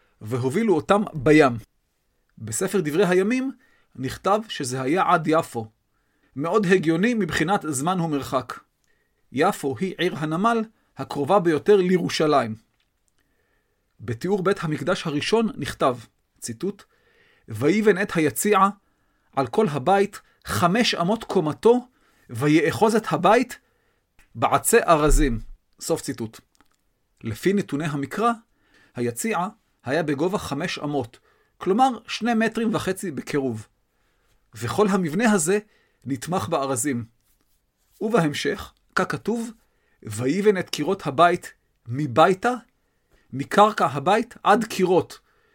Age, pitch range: 40-59, 140-215 Hz